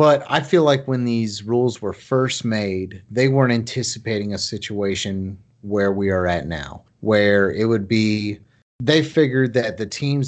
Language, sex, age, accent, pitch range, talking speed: English, male, 30-49, American, 105-130 Hz, 170 wpm